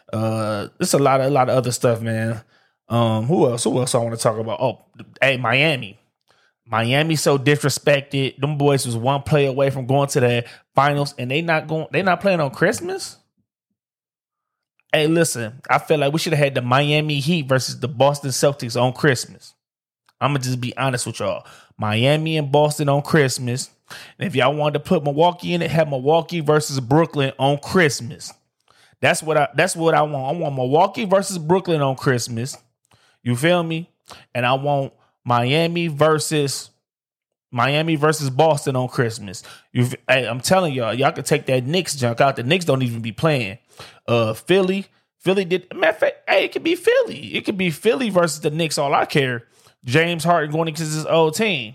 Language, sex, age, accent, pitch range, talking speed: English, male, 20-39, American, 125-160 Hz, 190 wpm